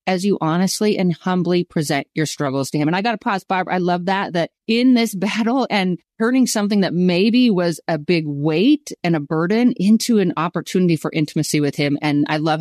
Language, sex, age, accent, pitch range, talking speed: English, female, 30-49, American, 160-230 Hz, 215 wpm